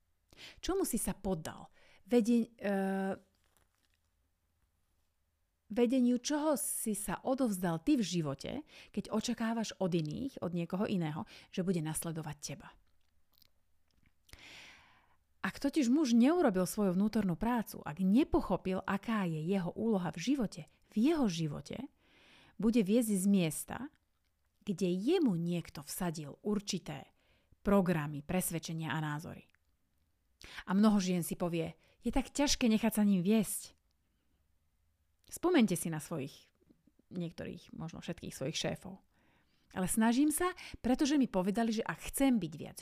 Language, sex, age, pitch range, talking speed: Slovak, female, 30-49, 155-225 Hz, 125 wpm